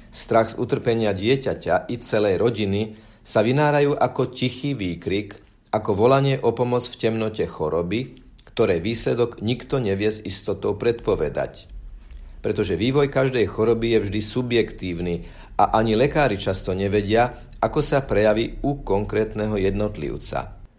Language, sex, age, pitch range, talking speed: Slovak, male, 50-69, 105-125 Hz, 125 wpm